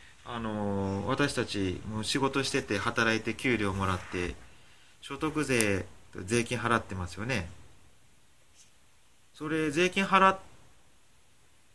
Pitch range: 95-125 Hz